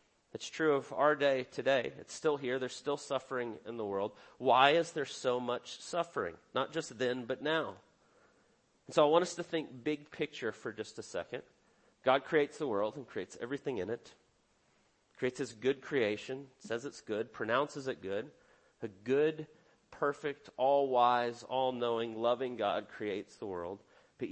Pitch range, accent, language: 125-155 Hz, American, English